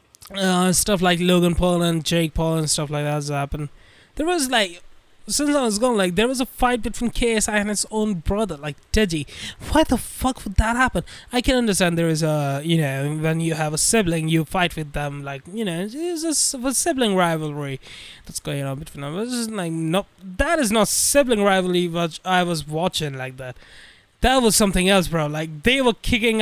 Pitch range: 160-215 Hz